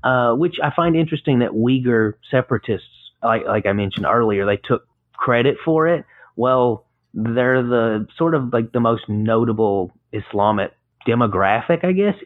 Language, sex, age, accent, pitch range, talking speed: English, male, 30-49, American, 110-140 Hz, 150 wpm